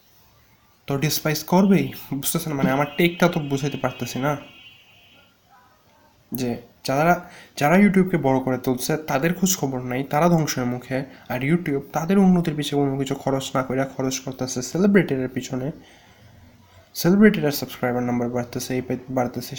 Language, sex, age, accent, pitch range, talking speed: Bengali, male, 20-39, native, 125-150 Hz, 130 wpm